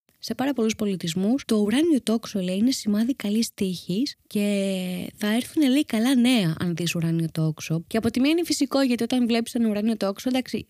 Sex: female